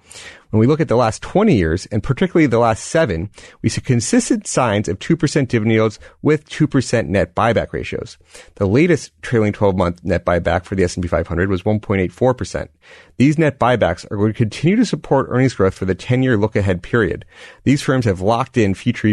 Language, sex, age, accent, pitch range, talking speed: English, male, 30-49, American, 100-135 Hz, 190 wpm